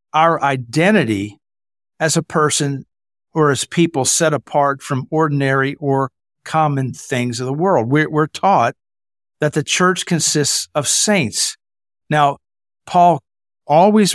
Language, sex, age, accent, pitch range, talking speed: English, male, 50-69, American, 125-160 Hz, 125 wpm